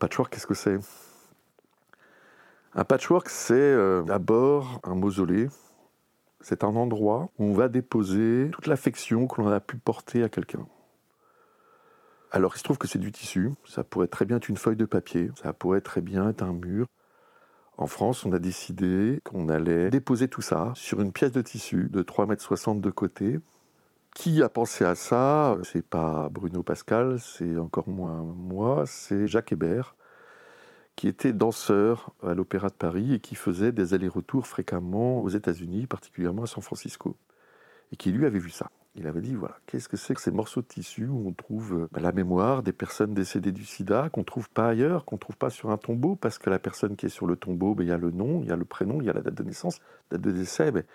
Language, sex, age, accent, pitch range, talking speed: French, male, 50-69, French, 90-125 Hz, 210 wpm